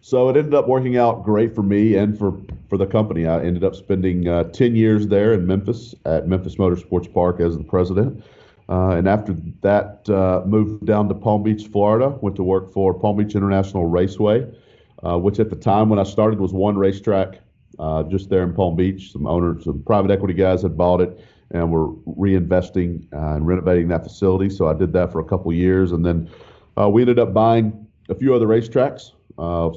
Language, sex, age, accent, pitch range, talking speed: English, male, 40-59, American, 85-105 Hz, 210 wpm